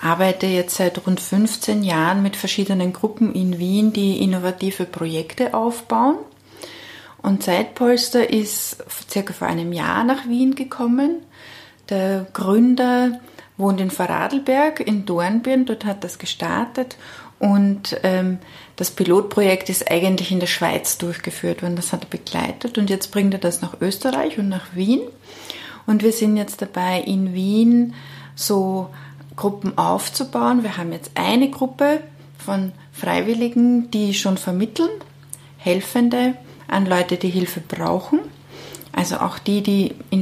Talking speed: 135 wpm